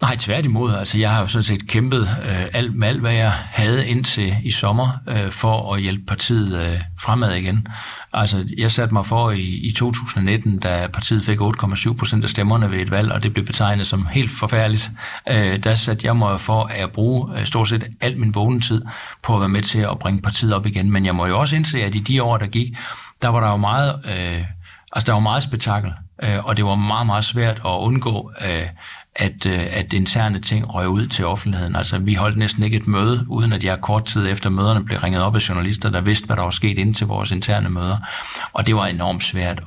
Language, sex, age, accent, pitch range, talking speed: Danish, male, 60-79, native, 100-115 Hz, 210 wpm